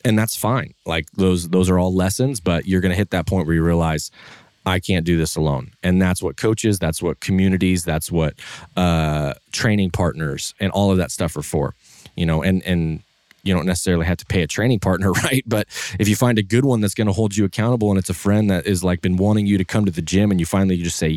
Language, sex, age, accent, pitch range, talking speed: English, male, 20-39, American, 85-105 Hz, 255 wpm